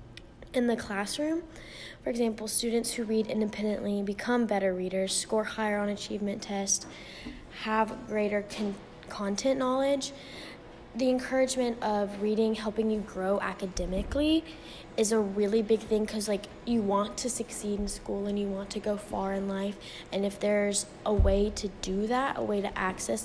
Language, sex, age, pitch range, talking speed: English, female, 10-29, 195-220 Hz, 165 wpm